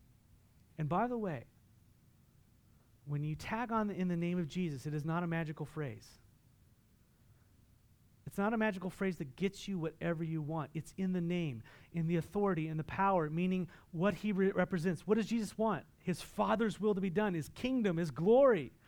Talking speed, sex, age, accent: 185 wpm, male, 30-49, American